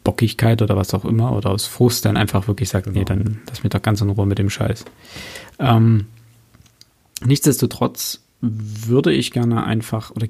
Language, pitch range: German, 105-120 Hz